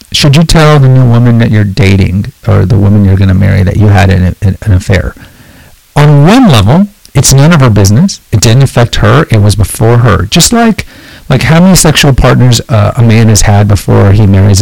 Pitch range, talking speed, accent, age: 100-135 Hz, 220 wpm, American, 50-69